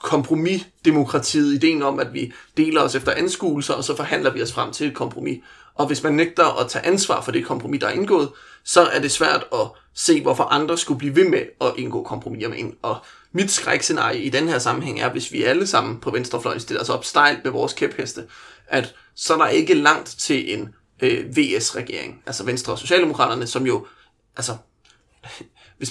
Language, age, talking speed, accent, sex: Danish, 30-49, 200 wpm, native, male